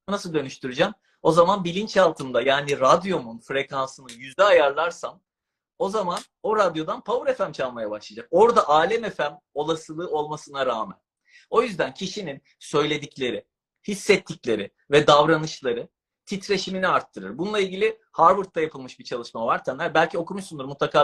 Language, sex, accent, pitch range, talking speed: Turkish, male, native, 160-210 Hz, 125 wpm